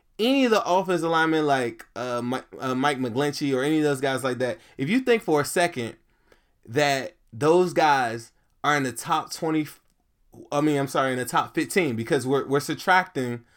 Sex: male